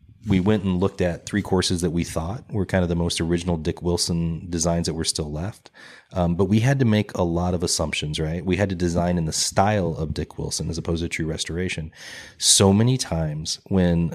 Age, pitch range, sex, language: 30-49, 85-105 Hz, male, English